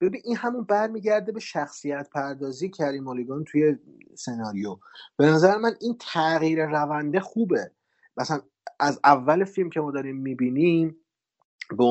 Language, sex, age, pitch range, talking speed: Persian, male, 30-49, 135-185 Hz, 130 wpm